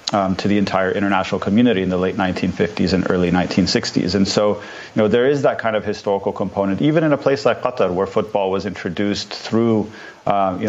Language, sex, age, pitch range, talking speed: English, male, 40-59, 95-100 Hz, 210 wpm